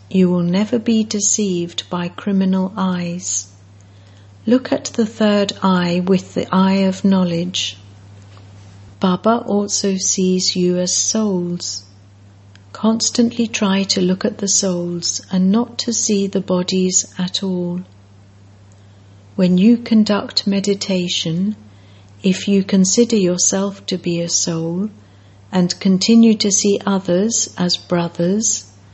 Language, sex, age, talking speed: English, female, 60-79, 120 wpm